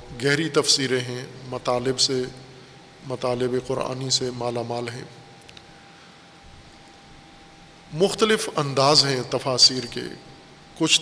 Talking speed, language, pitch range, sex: 95 wpm, Urdu, 130-155 Hz, male